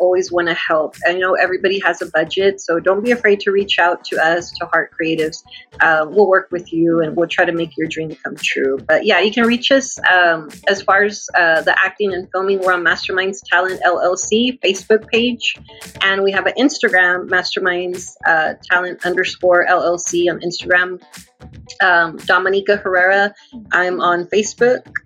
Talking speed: 180 wpm